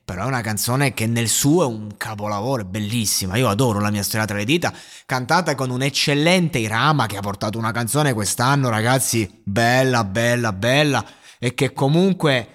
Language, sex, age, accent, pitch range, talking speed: Italian, male, 20-39, native, 115-145 Hz, 180 wpm